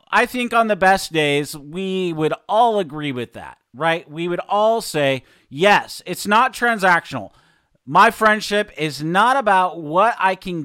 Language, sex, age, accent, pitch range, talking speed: English, male, 40-59, American, 150-205 Hz, 165 wpm